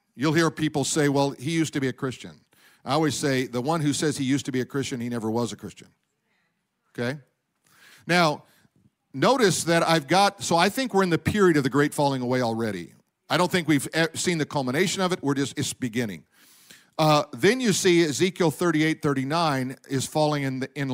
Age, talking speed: 50-69, 210 wpm